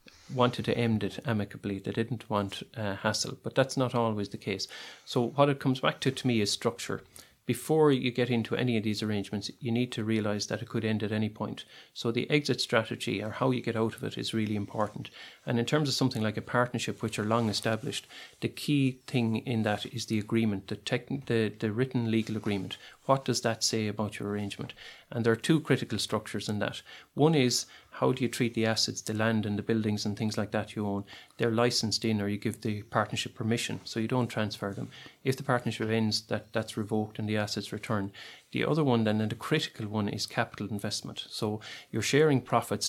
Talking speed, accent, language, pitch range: 225 wpm, Irish, English, 105-125 Hz